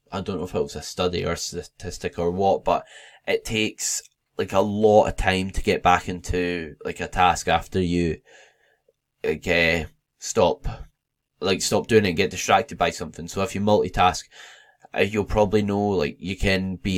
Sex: male